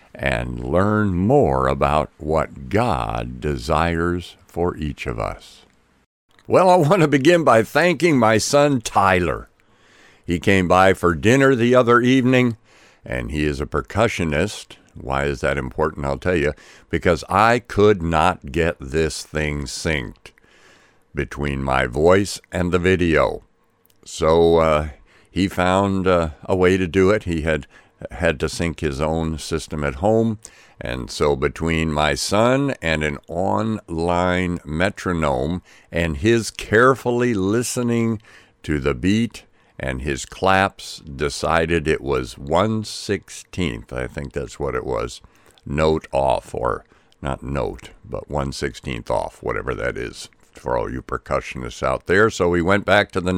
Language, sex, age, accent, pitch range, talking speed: English, male, 60-79, American, 75-105 Hz, 145 wpm